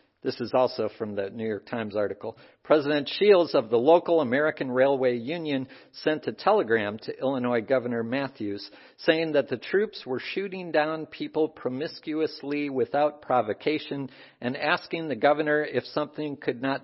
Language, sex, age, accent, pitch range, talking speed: English, male, 50-69, American, 115-150 Hz, 155 wpm